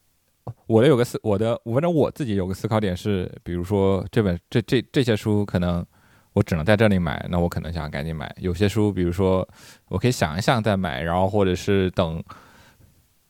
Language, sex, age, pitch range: Chinese, male, 20-39, 85-105 Hz